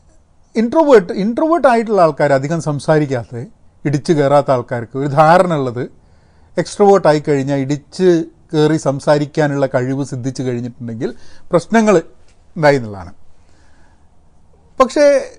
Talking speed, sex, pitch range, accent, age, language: 90 wpm, male, 125-190 Hz, native, 40-59, Malayalam